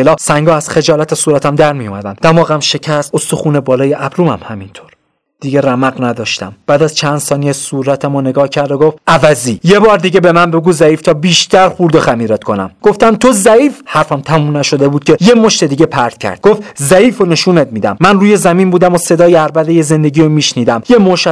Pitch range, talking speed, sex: 110-155 Hz, 195 wpm, male